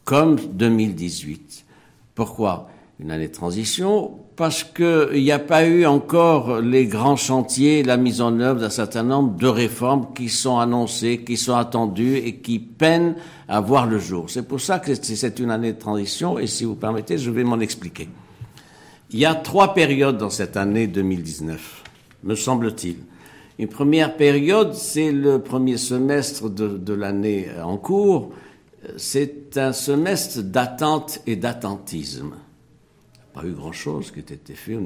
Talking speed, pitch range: 165 wpm, 105-140 Hz